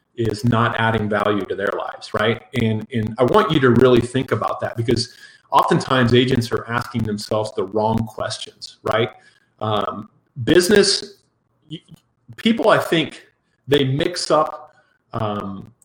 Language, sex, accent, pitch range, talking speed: English, male, American, 115-140 Hz, 140 wpm